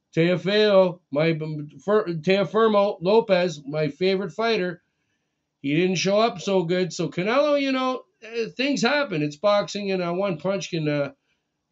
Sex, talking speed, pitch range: male, 145 wpm, 150-185 Hz